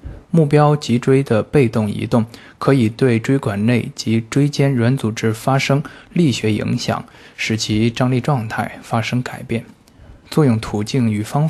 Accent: native